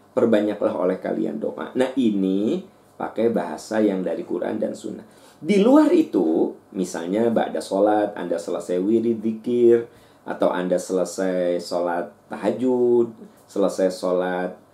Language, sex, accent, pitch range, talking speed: Indonesian, male, native, 95-115 Hz, 120 wpm